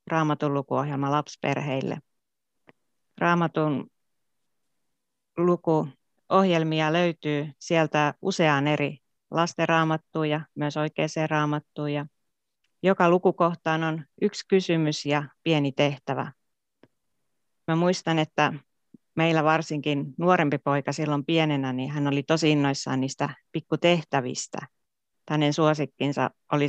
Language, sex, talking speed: Finnish, female, 90 wpm